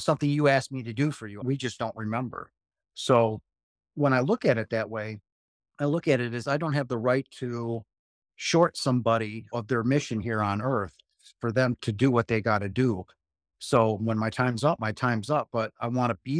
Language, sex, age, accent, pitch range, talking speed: English, male, 50-69, American, 110-130 Hz, 225 wpm